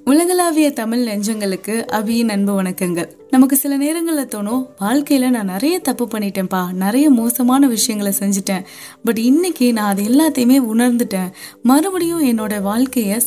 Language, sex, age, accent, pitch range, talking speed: Tamil, female, 20-39, native, 205-265 Hz, 120 wpm